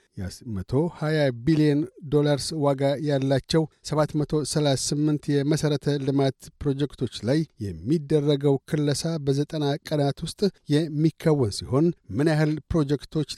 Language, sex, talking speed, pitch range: Amharic, male, 95 wpm, 135-155 Hz